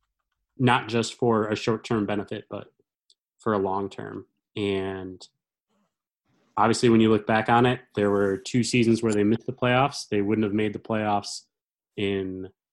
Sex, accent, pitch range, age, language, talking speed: male, American, 105-115 Hz, 20-39, English, 160 wpm